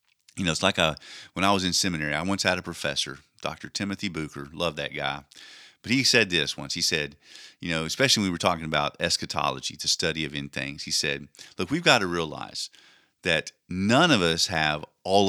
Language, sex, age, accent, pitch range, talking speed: English, male, 50-69, American, 85-135 Hz, 215 wpm